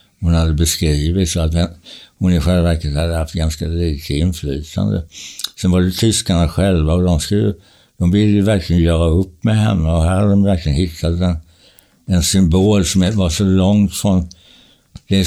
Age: 60-79